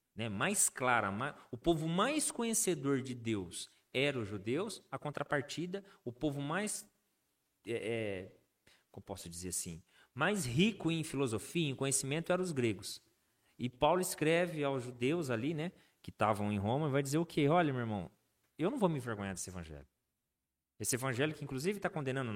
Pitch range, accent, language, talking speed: 115-160 Hz, Brazilian, Portuguese, 170 wpm